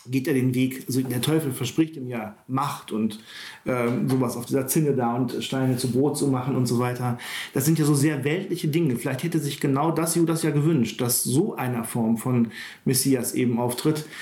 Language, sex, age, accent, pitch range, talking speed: German, male, 40-59, German, 130-160 Hz, 205 wpm